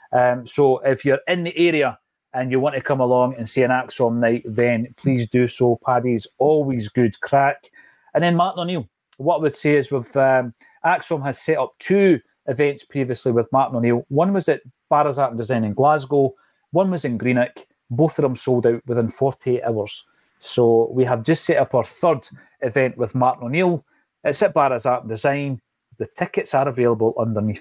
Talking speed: 200 wpm